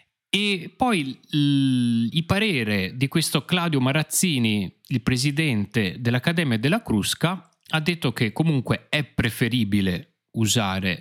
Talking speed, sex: 110 wpm, male